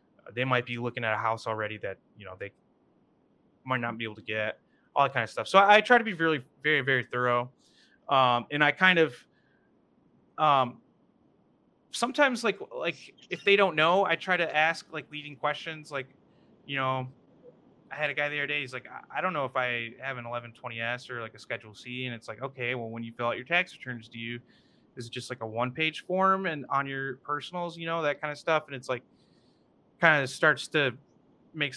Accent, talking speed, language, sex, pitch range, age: American, 225 wpm, English, male, 120-150 Hz, 30-49